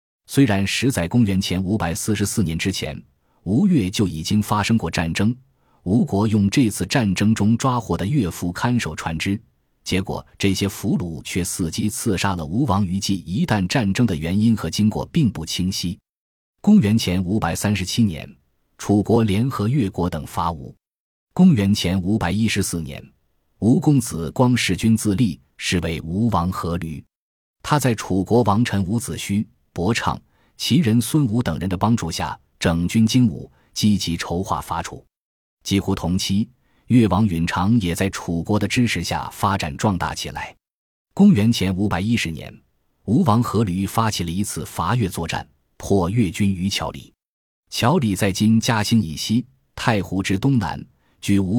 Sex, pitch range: male, 90-115 Hz